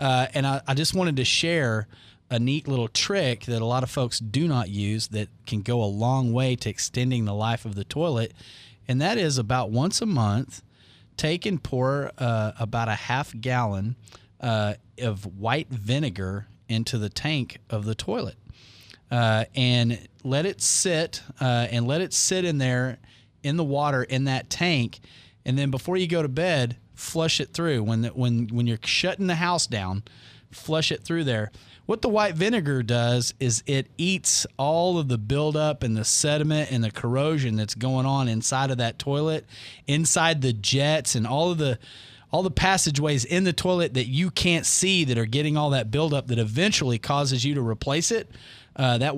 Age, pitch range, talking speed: 30-49, 115-150 Hz, 190 wpm